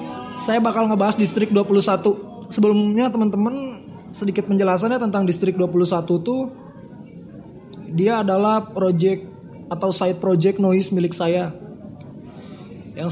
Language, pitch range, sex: Indonesian, 175-210 Hz, male